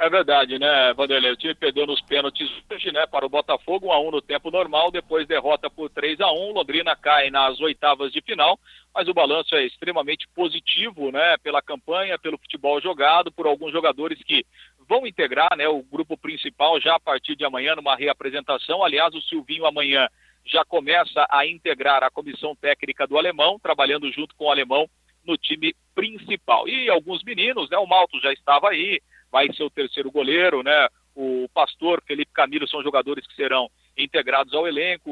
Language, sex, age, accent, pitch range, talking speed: Portuguese, male, 50-69, Brazilian, 140-185 Hz, 185 wpm